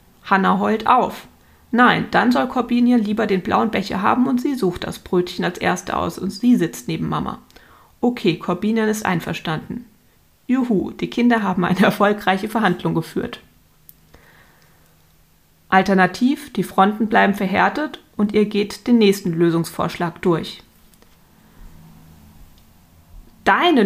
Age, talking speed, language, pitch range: 30-49, 125 wpm, German, 180-225 Hz